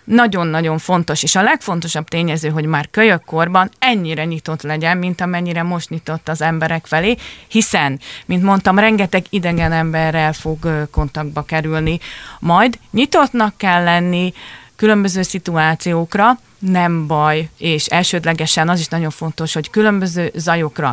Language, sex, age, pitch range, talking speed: Hungarian, female, 30-49, 150-185 Hz, 130 wpm